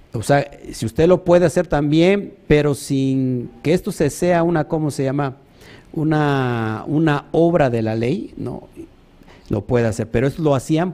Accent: Mexican